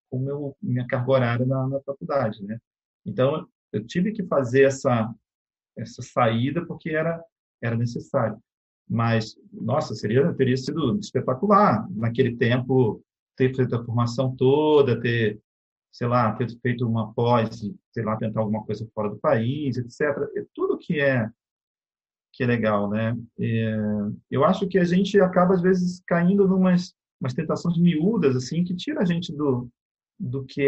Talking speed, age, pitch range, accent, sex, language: 155 wpm, 40-59, 115-145 Hz, Brazilian, male, Portuguese